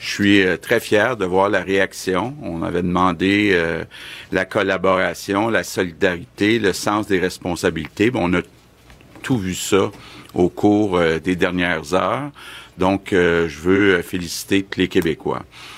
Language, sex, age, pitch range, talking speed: French, male, 50-69, 85-100 Hz, 150 wpm